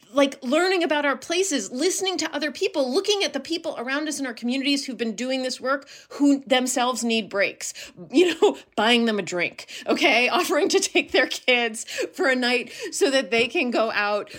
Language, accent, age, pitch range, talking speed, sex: English, American, 30-49, 225-285 Hz, 200 wpm, female